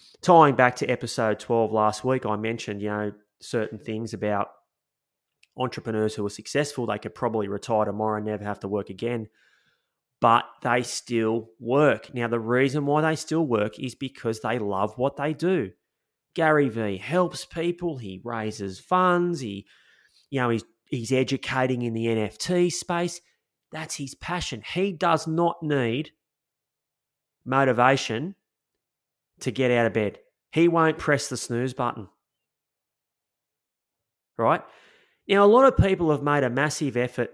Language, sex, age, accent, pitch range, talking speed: English, male, 30-49, Australian, 110-155 Hz, 150 wpm